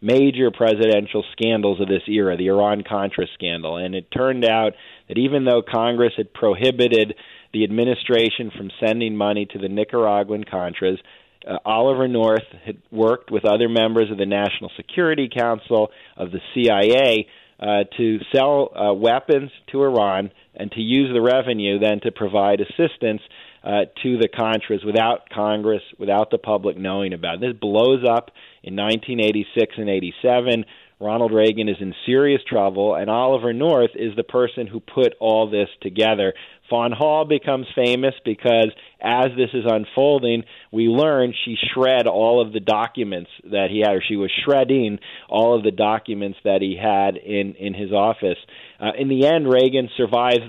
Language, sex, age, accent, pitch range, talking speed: English, male, 40-59, American, 105-125 Hz, 160 wpm